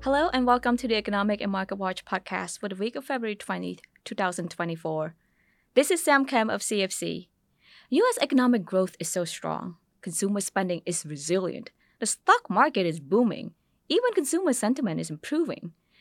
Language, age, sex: English, 20-39, female